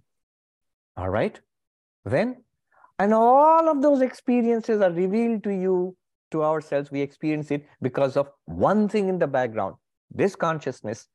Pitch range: 125-195 Hz